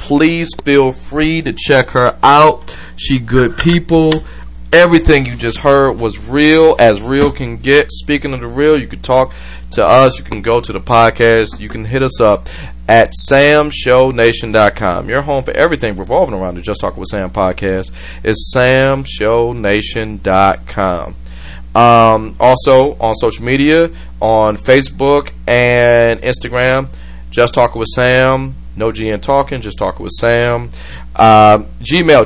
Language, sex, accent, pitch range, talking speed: English, male, American, 105-145 Hz, 145 wpm